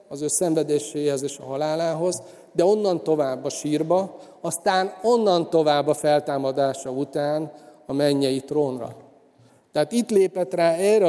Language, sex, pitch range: Hungarian, male, 140-165 Hz